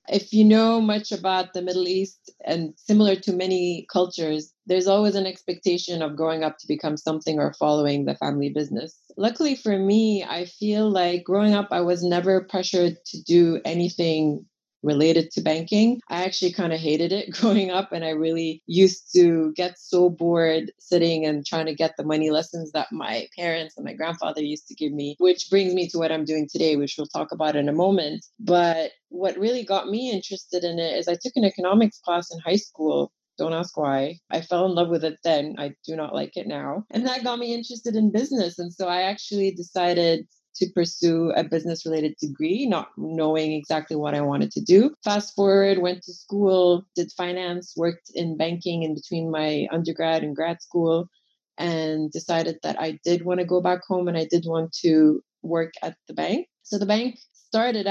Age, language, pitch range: 30-49, English, 160-190 Hz